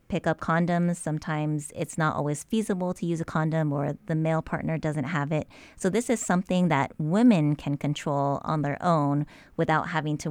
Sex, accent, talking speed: female, American, 190 wpm